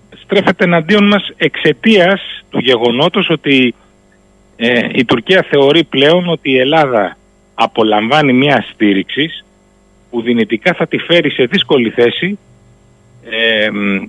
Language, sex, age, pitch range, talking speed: Greek, male, 40-59, 105-165 Hz, 115 wpm